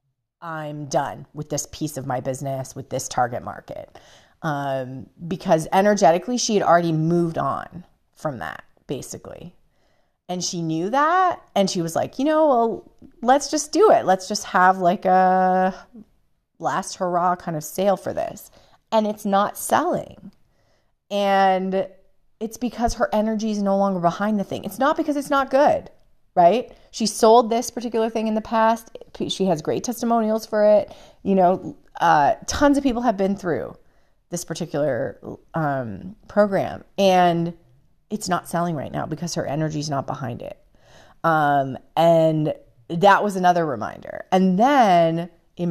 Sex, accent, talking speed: female, American, 160 wpm